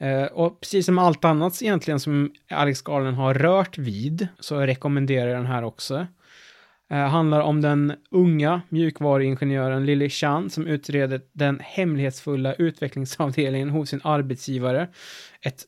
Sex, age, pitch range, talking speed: male, 20-39, 130-155 Hz, 140 wpm